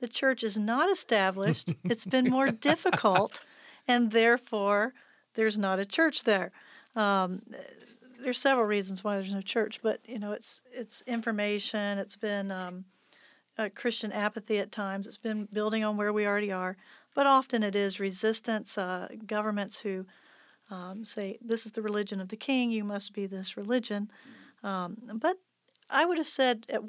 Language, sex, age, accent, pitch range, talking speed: English, female, 40-59, American, 200-245 Hz, 165 wpm